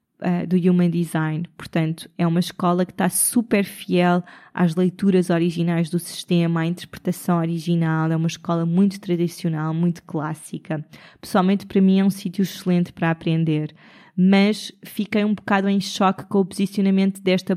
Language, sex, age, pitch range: Portuguese, female, 20-39, 175-210 Hz